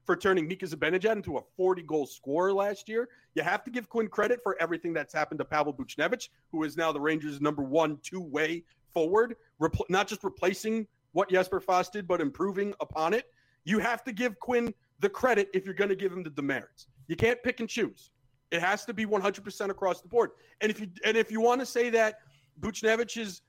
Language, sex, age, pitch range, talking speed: English, male, 40-59, 175-230 Hz, 205 wpm